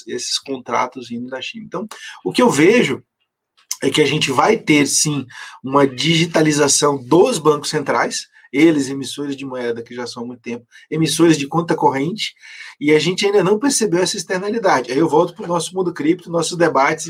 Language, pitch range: Portuguese, 150-215 Hz